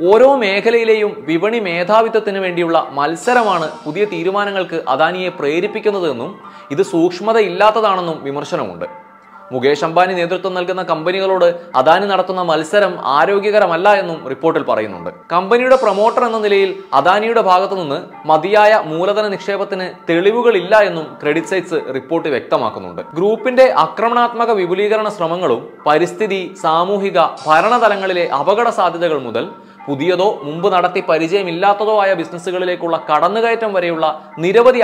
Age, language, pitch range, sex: 20-39, Malayalam, 165-210 Hz, male